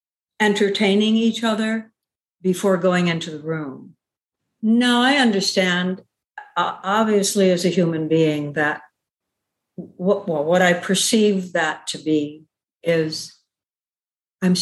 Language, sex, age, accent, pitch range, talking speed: English, female, 60-79, American, 165-215 Hz, 105 wpm